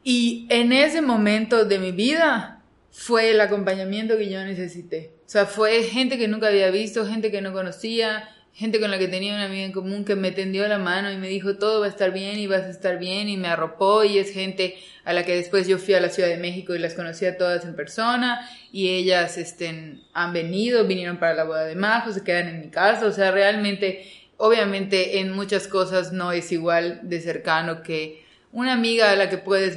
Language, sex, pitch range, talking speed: Spanish, female, 180-205 Hz, 225 wpm